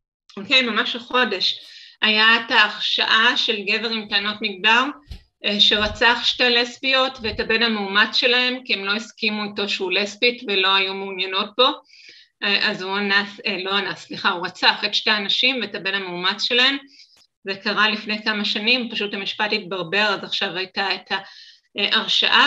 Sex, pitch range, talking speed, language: female, 200-235 Hz, 155 wpm, Hebrew